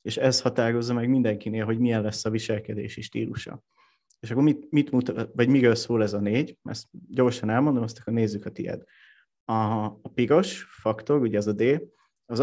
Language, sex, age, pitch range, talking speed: Hungarian, male, 30-49, 110-125 Hz, 190 wpm